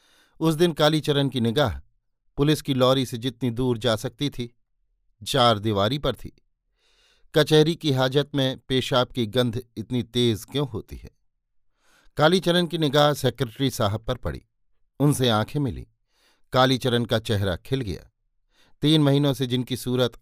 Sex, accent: male, native